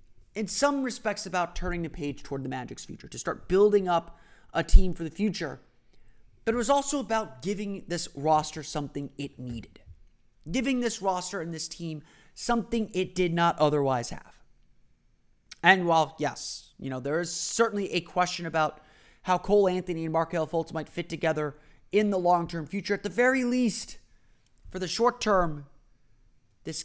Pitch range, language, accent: 150-190 Hz, English, American